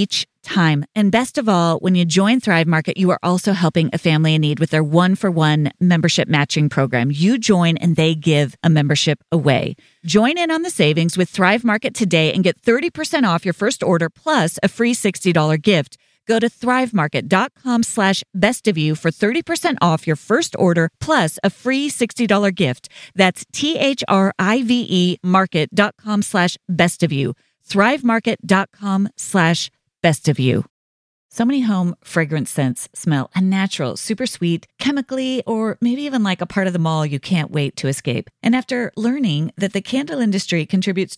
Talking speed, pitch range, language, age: 170 wpm, 155-215 Hz, English, 40-59